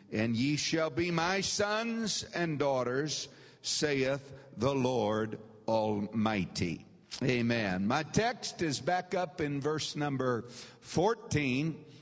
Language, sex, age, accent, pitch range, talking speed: English, male, 60-79, American, 110-145 Hz, 110 wpm